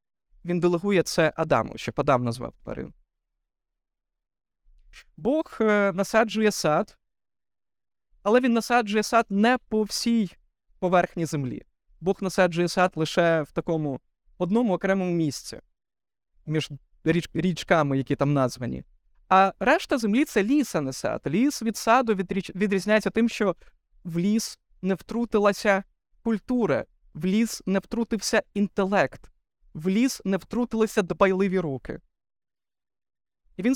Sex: male